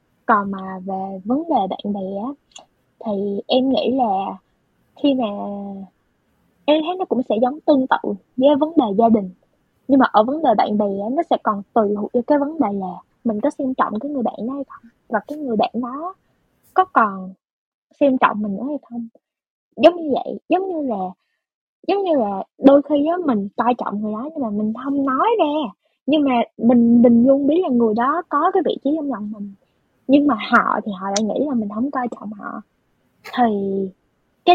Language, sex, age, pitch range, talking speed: Vietnamese, female, 20-39, 215-290 Hz, 210 wpm